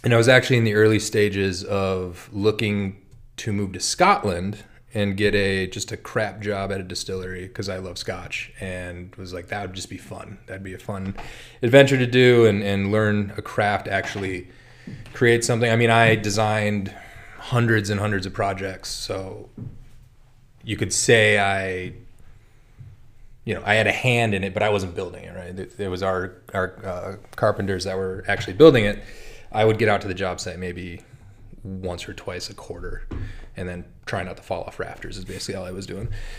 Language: English